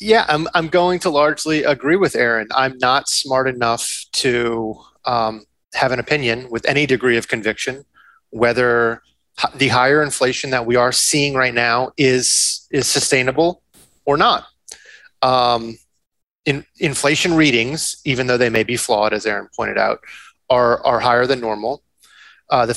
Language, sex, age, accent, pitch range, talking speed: English, male, 30-49, American, 120-145 Hz, 155 wpm